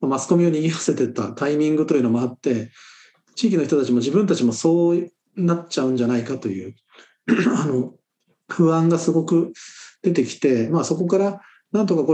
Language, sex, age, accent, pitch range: Japanese, male, 40-59, native, 130-180 Hz